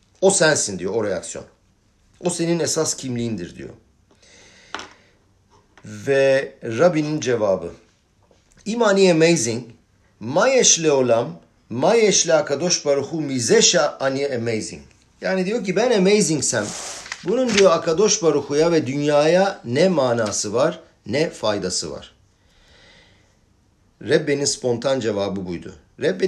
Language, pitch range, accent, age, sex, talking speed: Turkish, 105-165 Hz, native, 50-69, male, 105 wpm